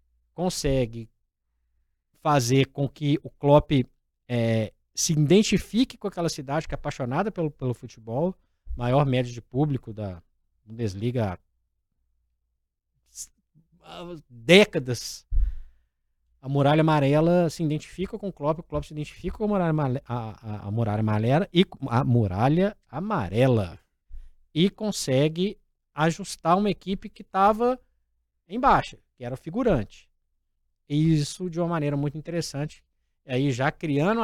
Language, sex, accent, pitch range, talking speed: Portuguese, male, Brazilian, 105-170 Hz, 125 wpm